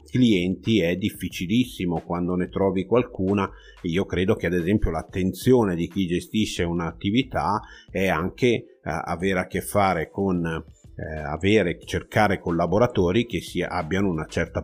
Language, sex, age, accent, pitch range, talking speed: Italian, male, 50-69, native, 85-100 Hz, 135 wpm